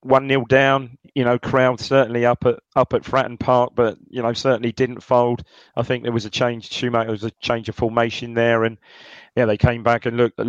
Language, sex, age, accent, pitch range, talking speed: English, male, 30-49, British, 110-130 Hz, 220 wpm